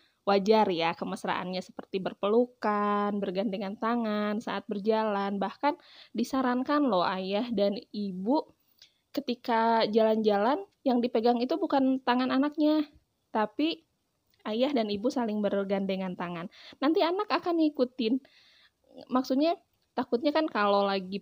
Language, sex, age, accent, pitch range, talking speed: Indonesian, female, 20-39, native, 205-255 Hz, 110 wpm